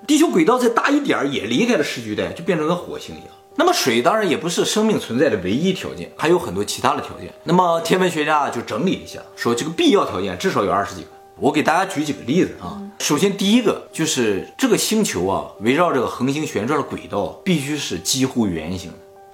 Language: Chinese